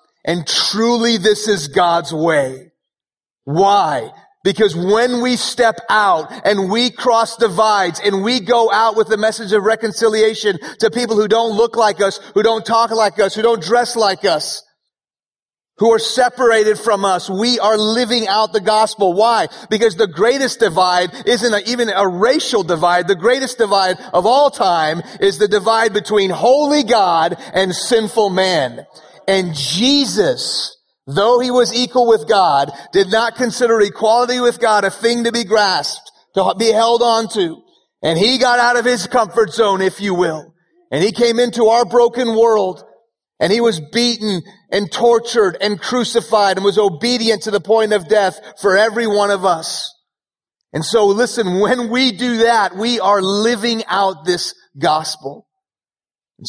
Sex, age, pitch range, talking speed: male, 30-49, 195-235 Hz, 165 wpm